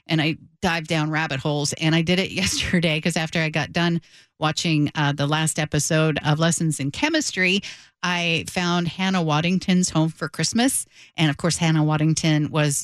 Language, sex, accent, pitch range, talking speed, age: English, female, American, 155-190 Hz, 180 wpm, 50-69